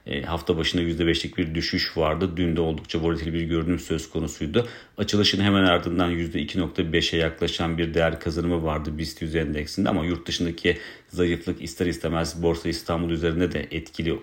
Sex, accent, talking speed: male, native, 155 wpm